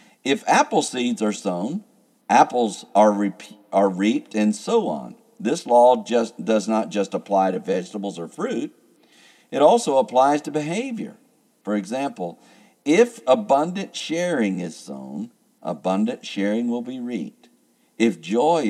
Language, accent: English, American